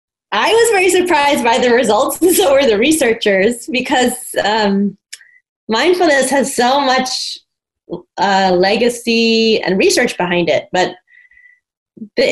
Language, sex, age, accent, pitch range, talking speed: English, female, 20-39, American, 185-275 Hz, 125 wpm